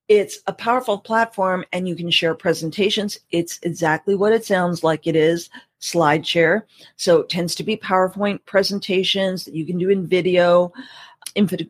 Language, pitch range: English, 170-200 Hz